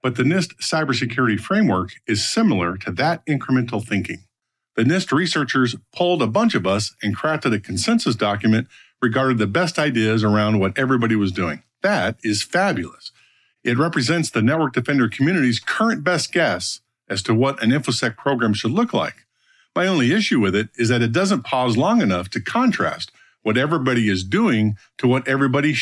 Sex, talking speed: male, 175 wpm